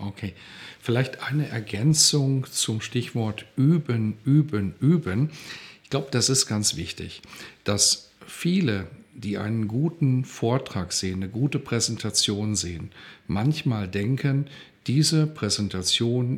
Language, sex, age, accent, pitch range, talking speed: German, male, 50-69, German, 105-140 Hz, 110 wpm